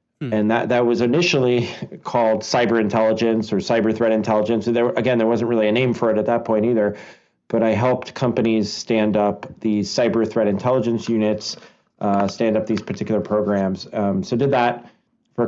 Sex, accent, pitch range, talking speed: male, American, 105-115 Hz, 185 wpm